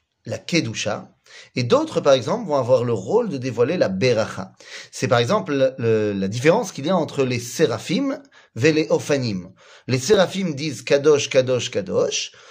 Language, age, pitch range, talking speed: French, 40-59, 130-190 Hz, 175 wpm